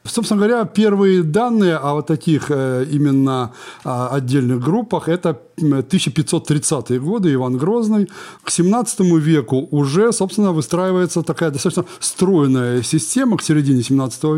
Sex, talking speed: male, 115 wpm